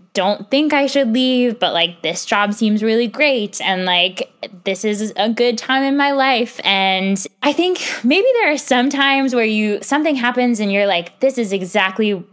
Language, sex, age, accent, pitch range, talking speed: English, female, 10-29, American, 210-270 Hz, 195 wpm